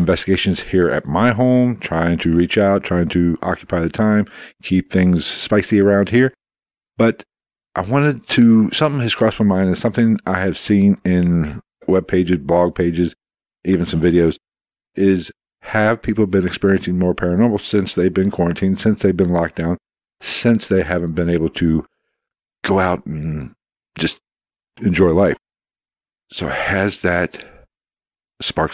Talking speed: 150 wpm